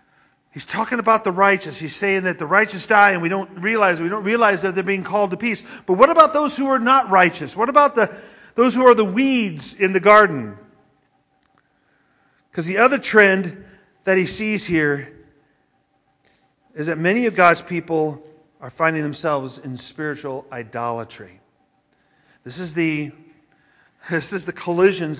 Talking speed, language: 165 wpm, English